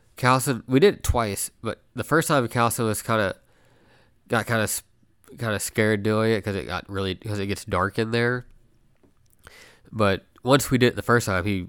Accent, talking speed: American, 205 wpm